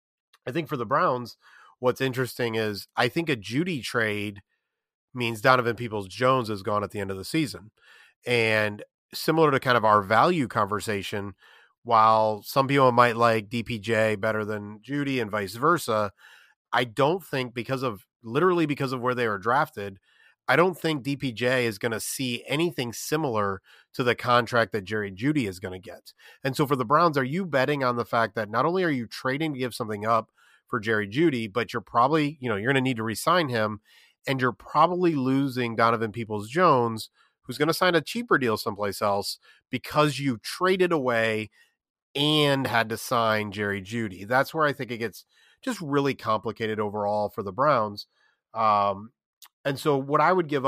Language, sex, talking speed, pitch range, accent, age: English, male, 185 wpm, 110-140 Hz, American, 30-49